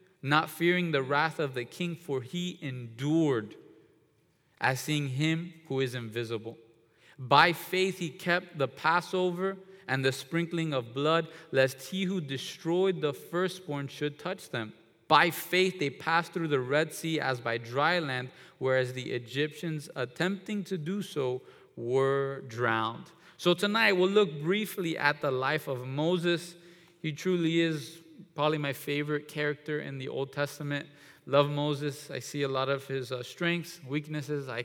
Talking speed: 155 wpm